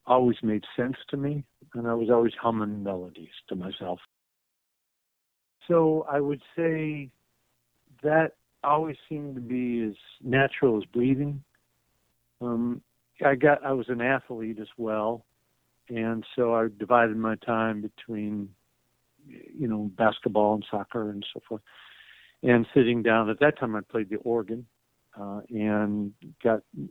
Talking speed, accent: 140 wpm, American